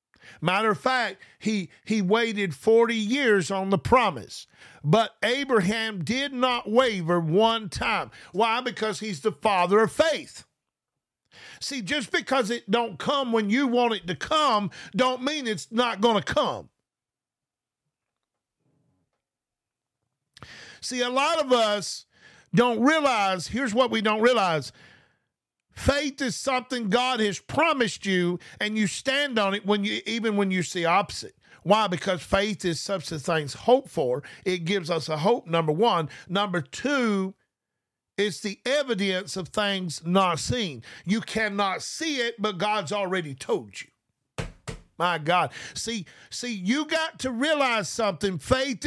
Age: 50-69